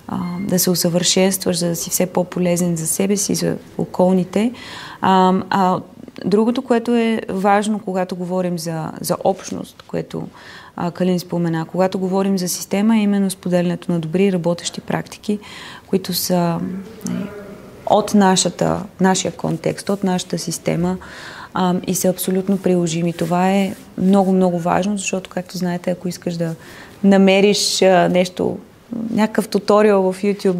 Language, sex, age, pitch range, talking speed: Bulgarian, female, 30-49, 180-200 Hz, 140 wpm